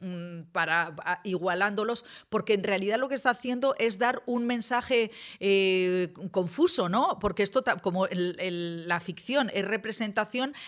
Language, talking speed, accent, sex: Spanish, 140 wpm, Spanish, female